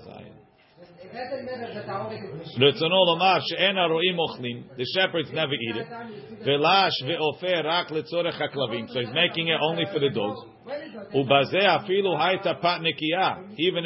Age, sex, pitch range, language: 50-69, male, 150-185 Hz, English